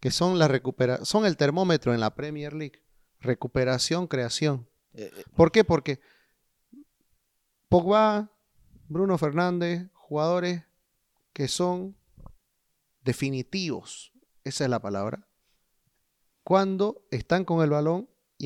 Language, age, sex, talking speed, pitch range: Spanish, 30-49, male, 105 wpm, 135-185 Hz